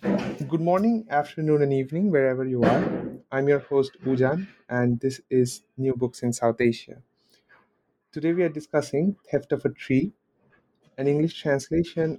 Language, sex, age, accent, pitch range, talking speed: English, male, 30-49, Indian, 125-150 Hz, 155 wpm